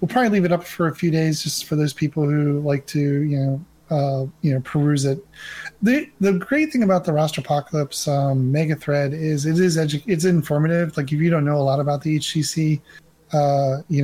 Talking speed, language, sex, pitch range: 210 wpm, English, male, 140-165 Hz